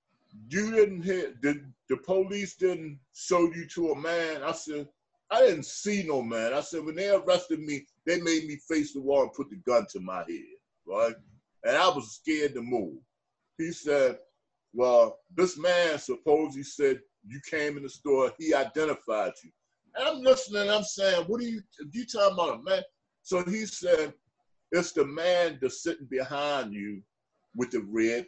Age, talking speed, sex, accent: 50-69, 185 wpm, male, American